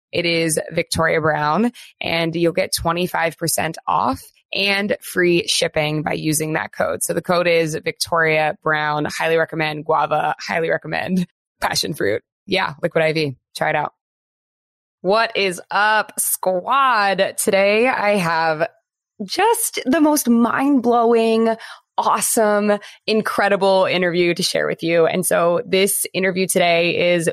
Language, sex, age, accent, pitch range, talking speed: English, female, 20-39, American, 165-210 Hz, 130 wpm